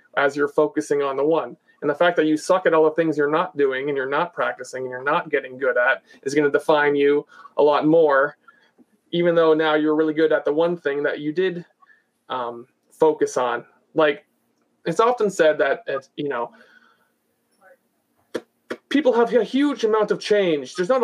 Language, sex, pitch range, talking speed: English, male, 150-190 Hz, 195 wpm